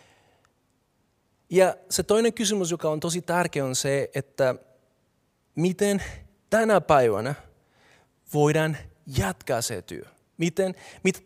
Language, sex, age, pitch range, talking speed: Finnish, male, 30-49, 130-160 Hz, 100 wpm